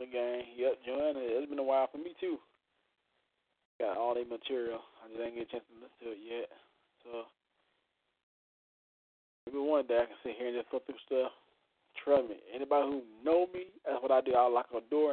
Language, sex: English, male